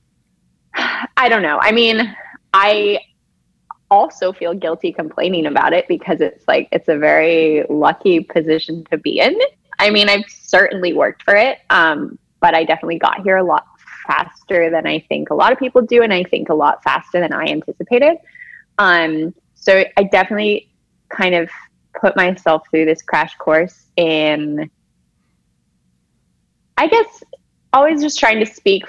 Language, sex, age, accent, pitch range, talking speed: English, female, 20-39, American, 160-210 Hz, 160 wpm